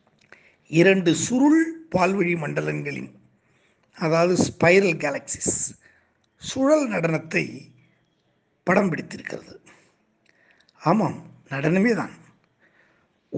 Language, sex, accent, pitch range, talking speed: Tamil, male, native, 155-205 Hz, 65 wpm